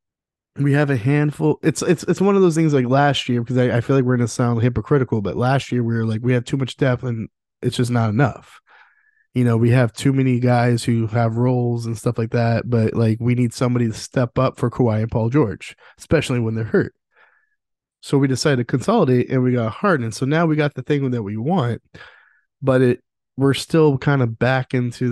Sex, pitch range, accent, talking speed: male, 115-140 Hz, American, 230 wpm